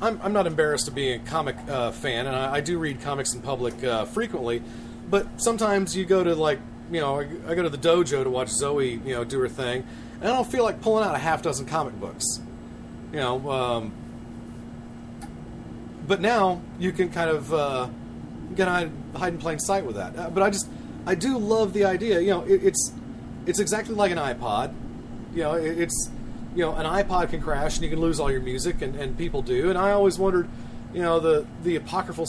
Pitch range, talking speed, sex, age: 120-185 Hz, 220 wpm, male, 40-59